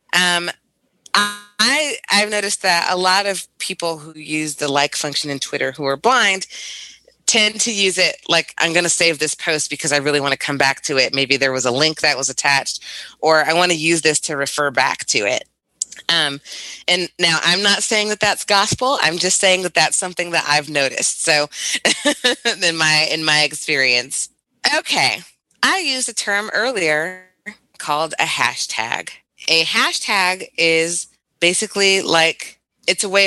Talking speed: 180 wpm